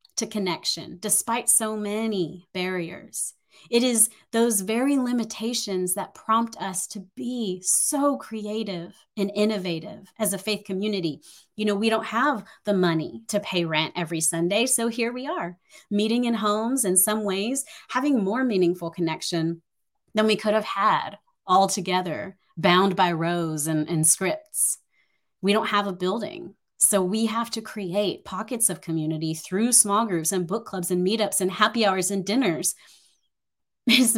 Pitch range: 170-215 Hz